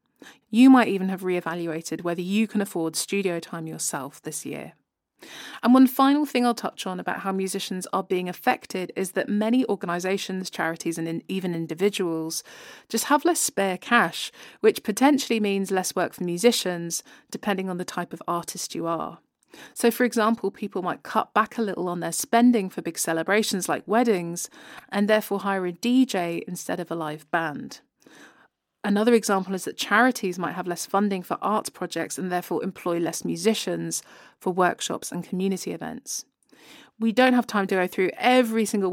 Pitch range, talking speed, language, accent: 175-220 Hz, 175 wpm, English, British